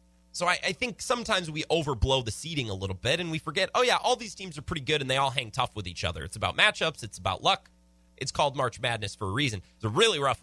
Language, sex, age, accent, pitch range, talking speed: English, male, 30-49, American, 95-145 Hz, 275 wpm